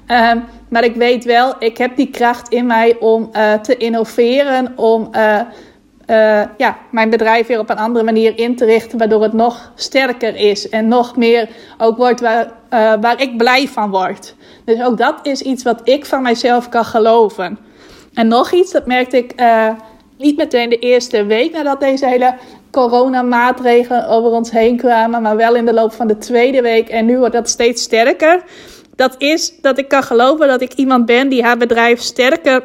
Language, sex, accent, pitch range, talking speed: Dutch, female, Dutch, 230-265 Hz, 190 wpm